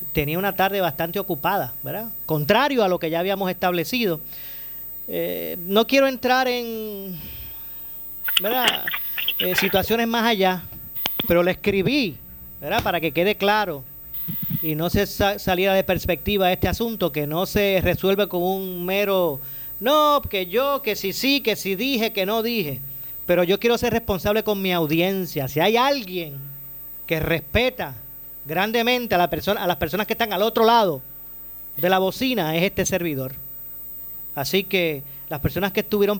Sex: male